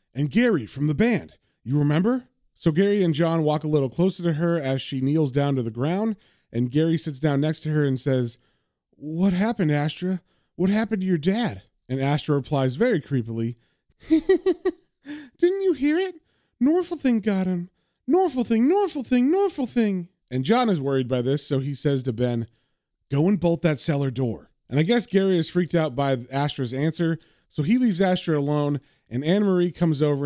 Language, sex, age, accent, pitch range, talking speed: English, male, 30-49, American, 130-190 Hz, 190 wpm